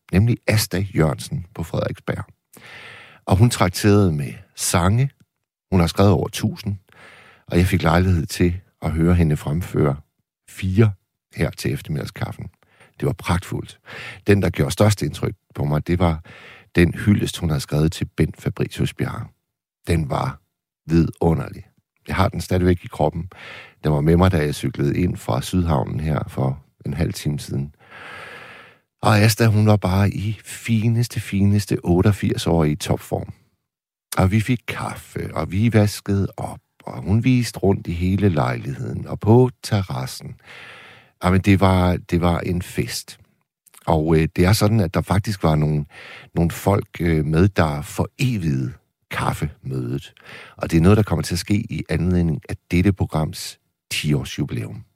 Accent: native